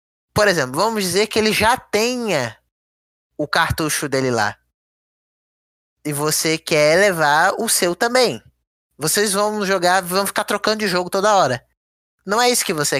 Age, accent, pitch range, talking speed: 10-29, Brazilian, 150-200 Hz, 155 wpm